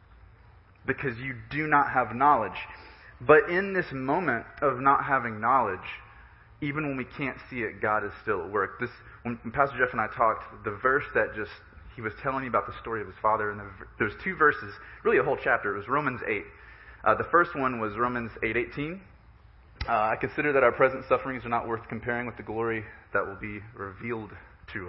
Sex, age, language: male, 20-39, English